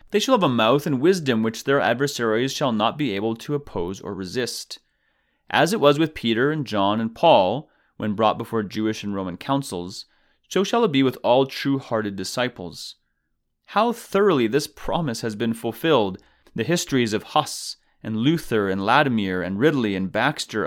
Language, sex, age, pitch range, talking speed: English, male, 30-49, 105-140 Hz, 175 wpm